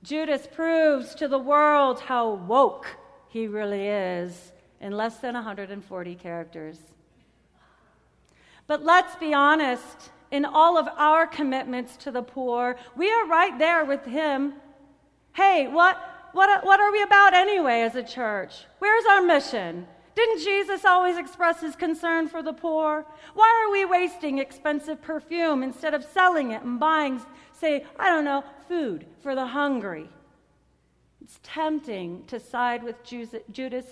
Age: 40-59